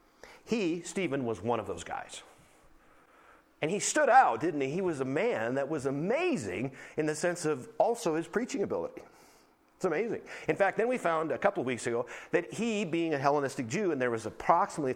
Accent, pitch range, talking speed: American, 125-175 Hz, 200 wpm